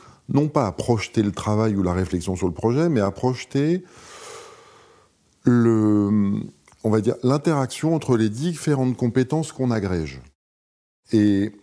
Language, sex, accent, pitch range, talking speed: French, male, French, 95-120 Hz, 120 wpm